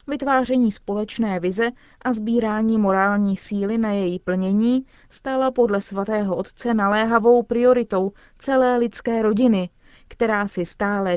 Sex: female